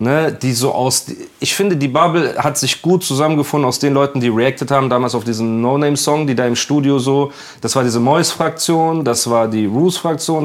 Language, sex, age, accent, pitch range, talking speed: German, male, 30-49, German, 115-150 Hz, 195 wpm